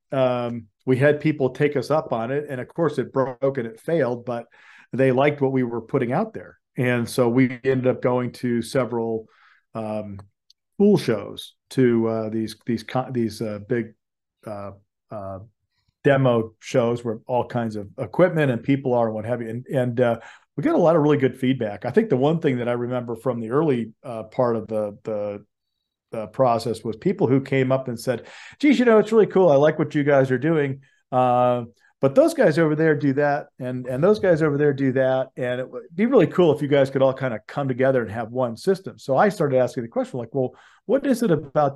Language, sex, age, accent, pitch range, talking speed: English, male, 40-59, American, 120-145 Hz, 225 wpm